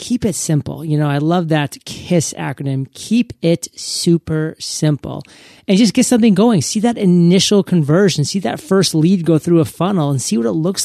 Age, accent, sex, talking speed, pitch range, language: 30-49, American, male, 200 wpm, 150-190 Hz, English